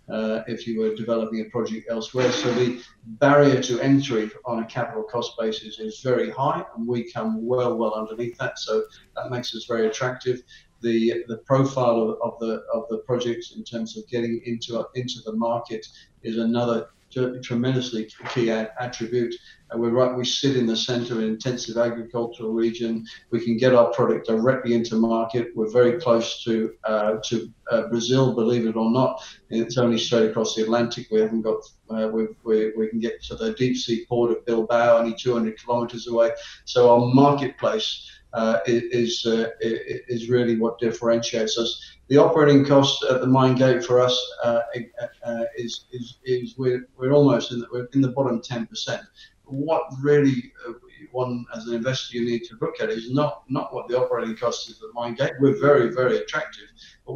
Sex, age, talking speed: male, 50-69, 185 wpm